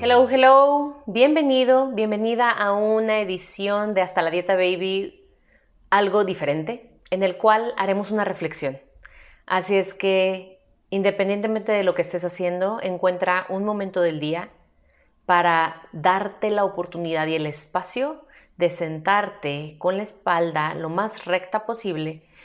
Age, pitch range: 30-49, 170-220 Hz